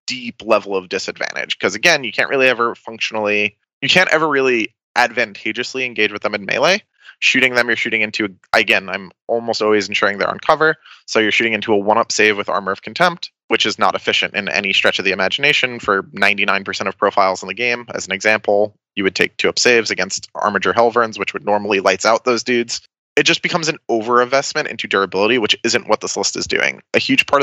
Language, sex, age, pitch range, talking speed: English, male, 20-39, 105-130 Hz, 210 wpm